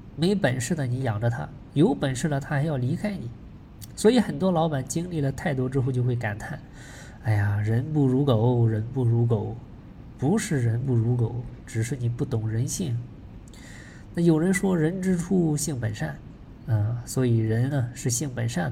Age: 20-39